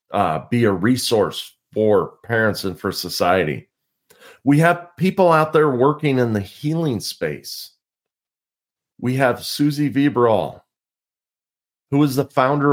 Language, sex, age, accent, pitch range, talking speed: English, male, 40-59, American, 105-145 Hz, 125 wpm